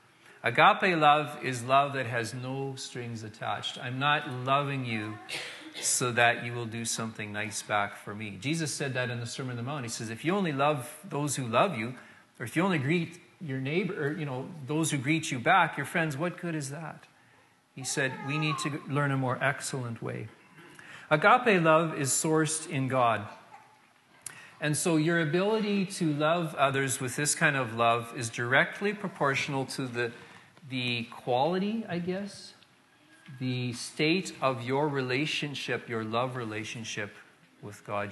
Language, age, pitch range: English, 40-59, 120-150 Hz